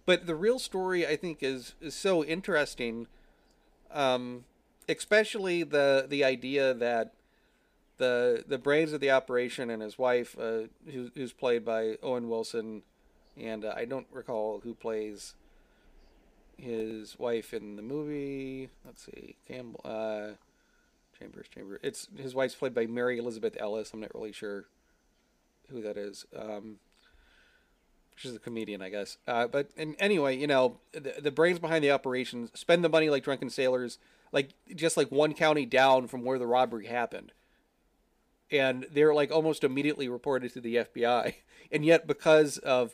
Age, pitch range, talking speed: 40-59, 115-155 Hz, 160 wpm